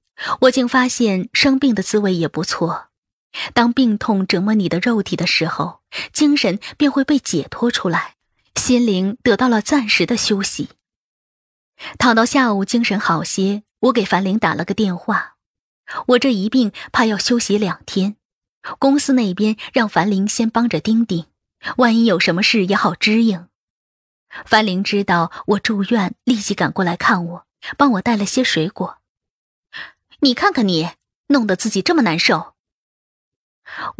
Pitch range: 195-255 Hz